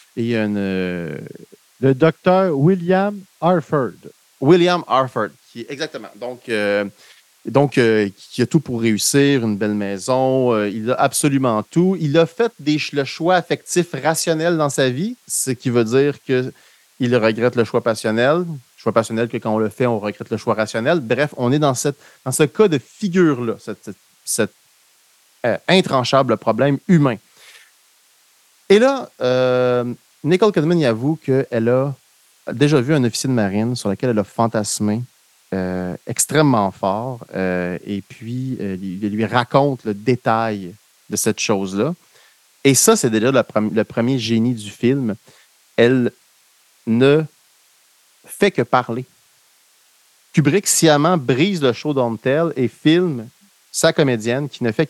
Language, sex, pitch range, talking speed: French, male, 115-150 Hz, 160 wpm